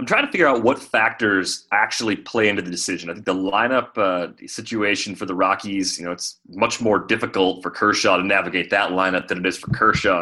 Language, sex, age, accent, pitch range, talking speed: English, male, 30-49, American, 95-130 Hz, 225 wpm